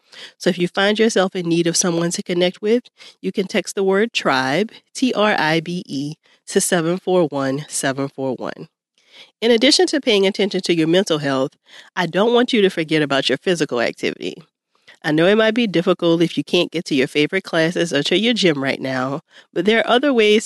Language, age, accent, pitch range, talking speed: English, 40-59, American, 145-195 Hz, 190 wpm